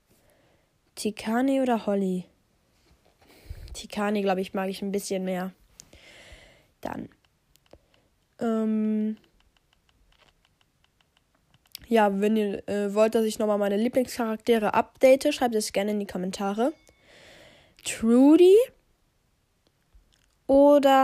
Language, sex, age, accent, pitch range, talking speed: German, female, 10-29, German, 205-250 Hz, 90 wpm